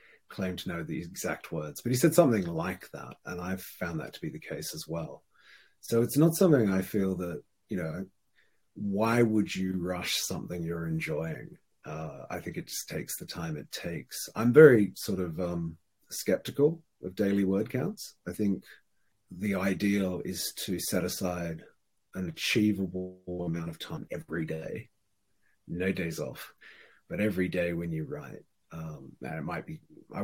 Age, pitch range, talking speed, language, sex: 40-59, 85-105 Hz, 175 wpm, English, male